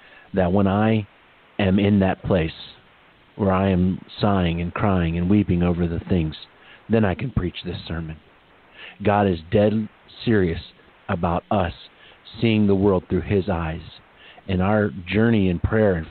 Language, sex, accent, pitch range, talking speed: English, male, American, 95-110 Hz, 155 wpm